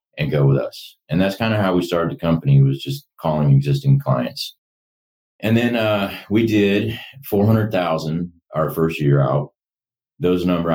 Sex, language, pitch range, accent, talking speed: male, English, 75-90 Hz, American, 180 wpm